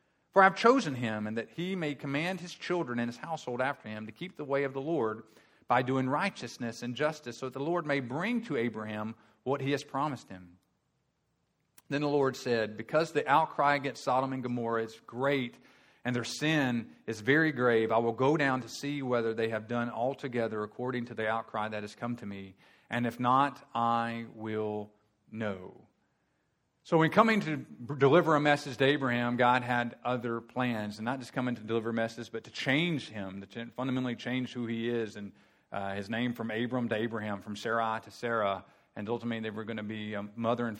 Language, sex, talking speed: English, male, 210 wpm